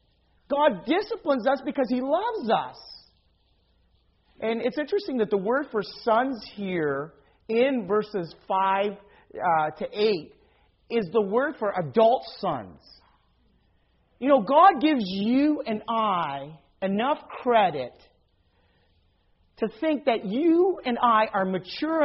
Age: 40-59